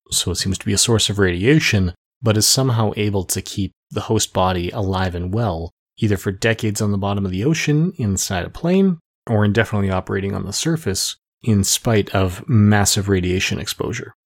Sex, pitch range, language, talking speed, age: male, 95-115 Hz, English, 190 wpm, 30-49